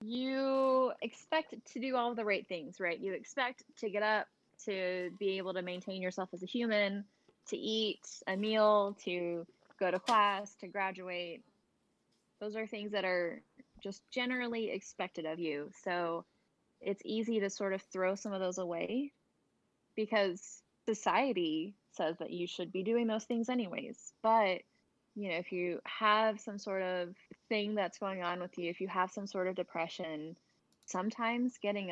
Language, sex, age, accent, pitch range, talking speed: English, female, 10-29, American, 180-225 Hz, 165 wpm